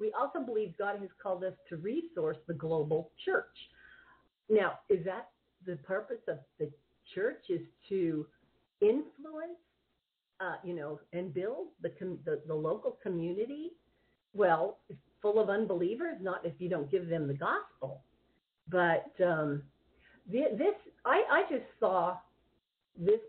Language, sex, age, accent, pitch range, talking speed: English, female, 50-69, American, 170-275 Hz, 140 wpm